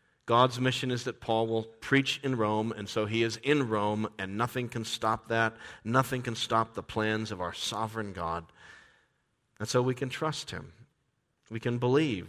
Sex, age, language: male, 50-69, English